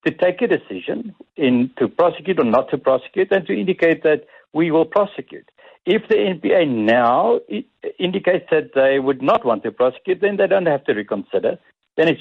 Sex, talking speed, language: male, 180 wpm, English